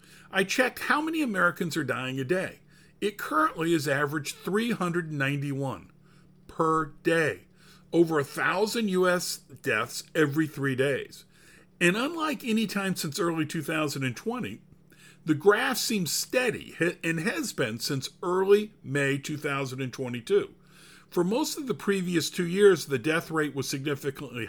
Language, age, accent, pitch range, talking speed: English, 50-69, American, 145-190 Hz, 130 wpm